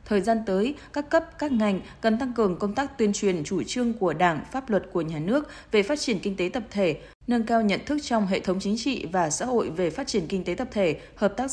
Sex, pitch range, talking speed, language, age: female, 190-235 Hz, 265 wpm, Vietnamese, 20-39